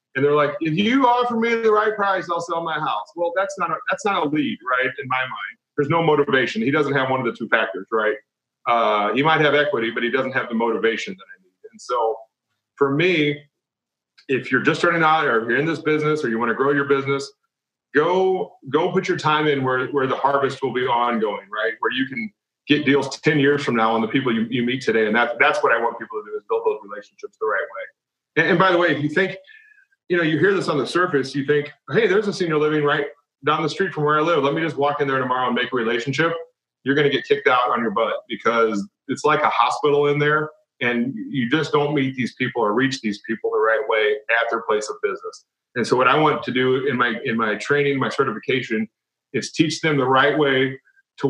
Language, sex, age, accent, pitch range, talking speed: English, male, 40-59, American, 130-180 Hz, 255 wpm